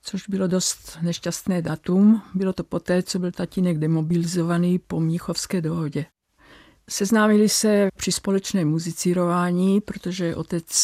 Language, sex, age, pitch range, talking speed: Czech, female, 50-69, 165-190 Hz, 120 wpm